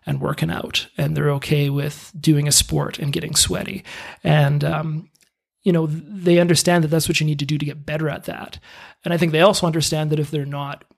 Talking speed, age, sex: 225 wpm, 30-49, male